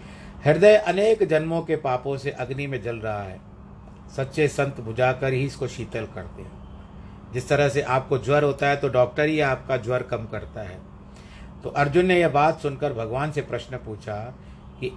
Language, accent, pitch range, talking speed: Hindi, native, 120-150 Hz, 180 wpm